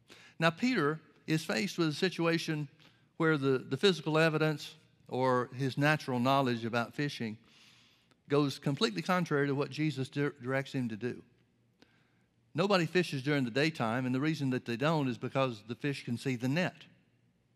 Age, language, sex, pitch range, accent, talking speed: 60-79, English, male, 135-165 Hz, American, 160 wpm